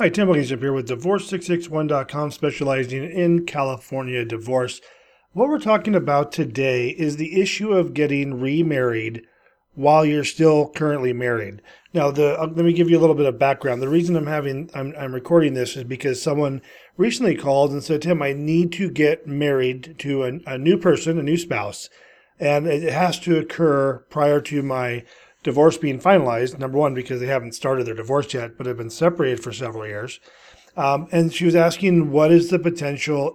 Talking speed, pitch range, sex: 185 wpm, 135-170 Hz, male